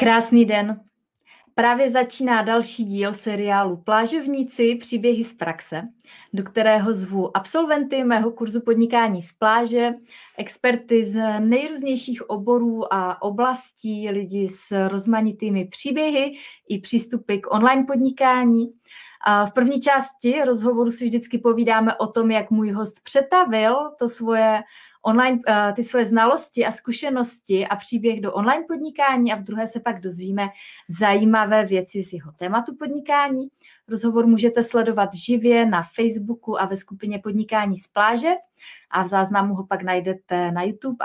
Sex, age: female, 20-39